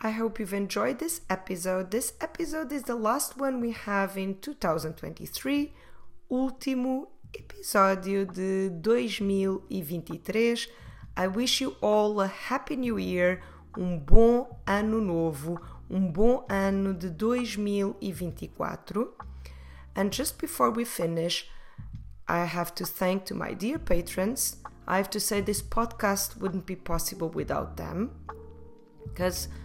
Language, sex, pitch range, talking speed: English, female, 185-235 Hz, 125 wpm